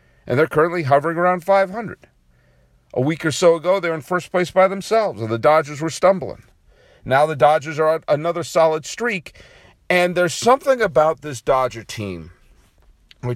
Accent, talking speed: American, 175 wpm